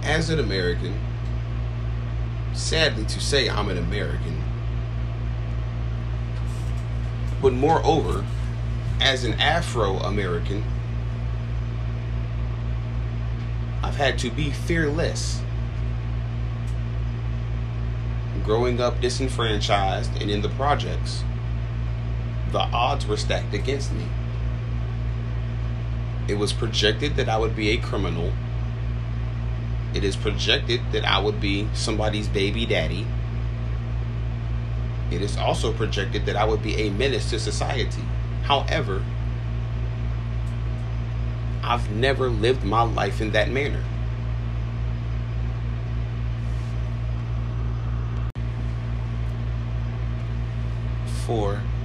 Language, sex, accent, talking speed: English, male, American, 85 wpm